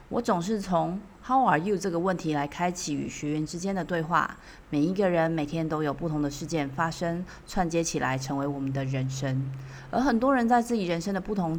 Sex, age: female, 30-49